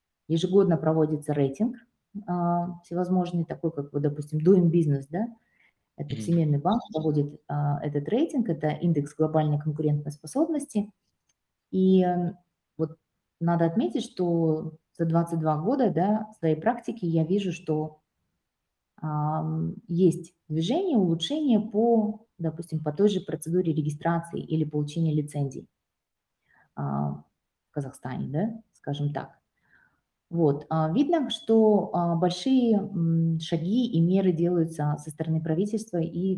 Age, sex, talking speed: 20-39, female, 115 wpm